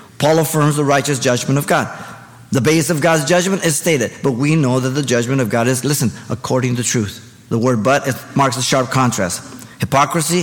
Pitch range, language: 125-165 Hz, English